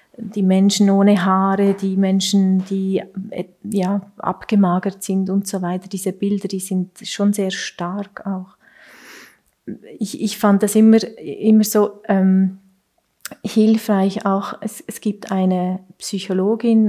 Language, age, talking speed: German, 30-49, 130 wpm